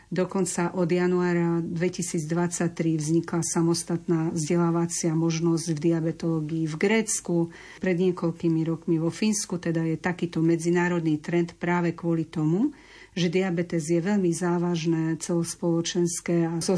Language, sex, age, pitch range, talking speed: Slovak, female, 50-69, 165-180 Hz, 120 wpm